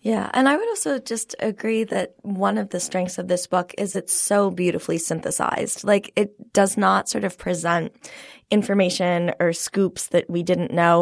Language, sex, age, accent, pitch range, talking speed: English, female, 20-39, American, 175-215 Hz, 185 wpm